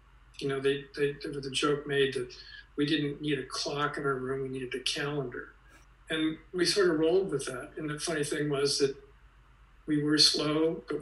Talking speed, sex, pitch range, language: 210 wpm, male, 135-145 Hz, English